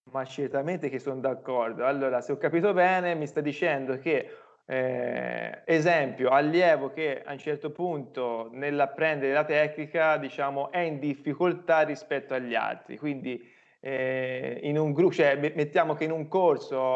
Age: 20-39